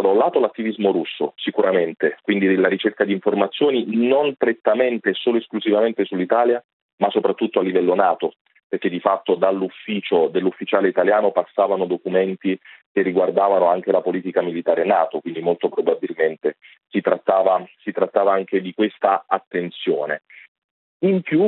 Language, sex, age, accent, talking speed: Italian, male, 40-59, native, 135 wpm